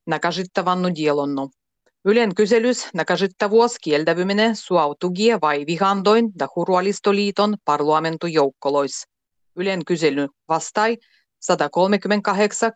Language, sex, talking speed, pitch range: Finnish, female, 80 wpm, 150-205 Hz